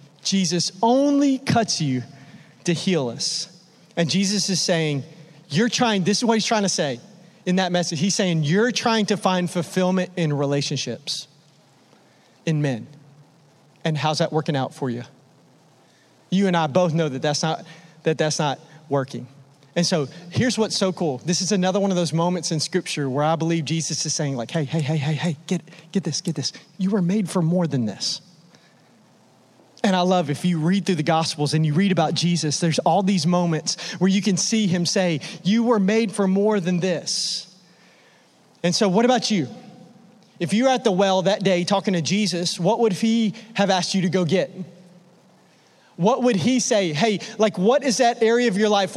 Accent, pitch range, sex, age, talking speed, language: American, 160-200 Hz, male, 30-49, 195 wpm, English